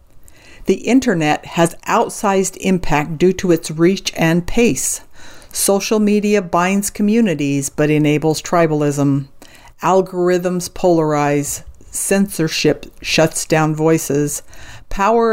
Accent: American